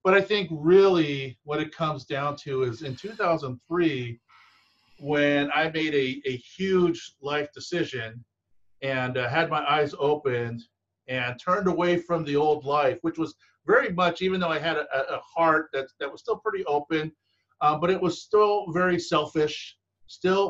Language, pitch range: English, 130-165 Hz